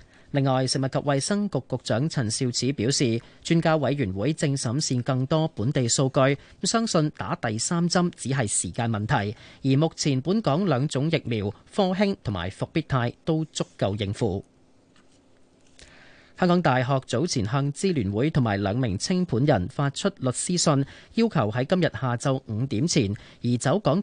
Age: 30-49